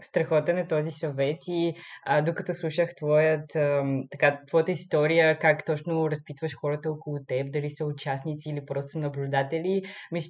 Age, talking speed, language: 20-39, 155 wpm, Bulgarian